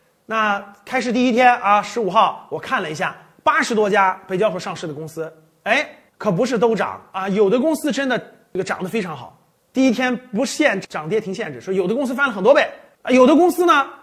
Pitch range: 185-275 Hz